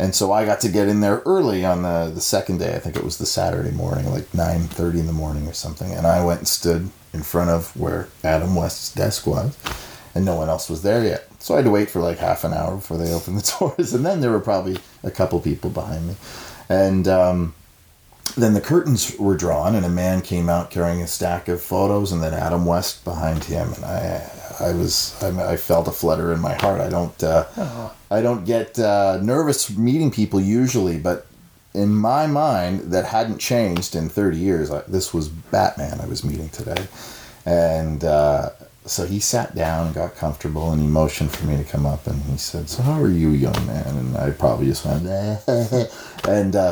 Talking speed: 215 wpm